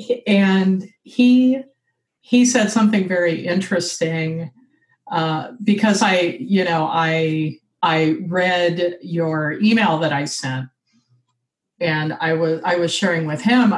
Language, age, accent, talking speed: English, 40-59, American, 120 wpm